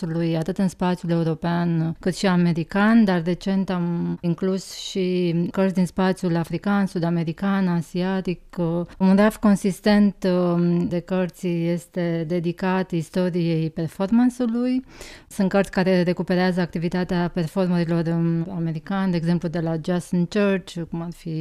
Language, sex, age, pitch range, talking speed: Romanian, female, 30-49, 170-190 Hz, 125 wpm